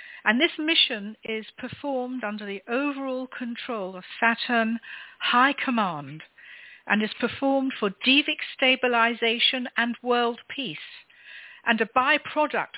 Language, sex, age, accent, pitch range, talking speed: English, female, 60-79, British, 210-270 Hz, 115 wpm